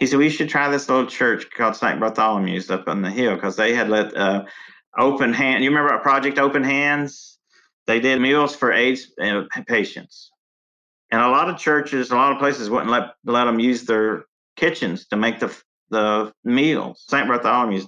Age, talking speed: 50-69, 190 wpm